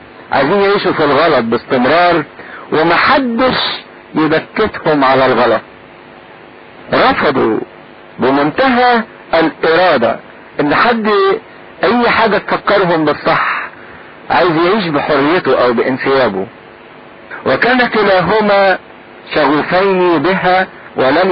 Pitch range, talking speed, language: 135-225 Hz, 80 wpm, English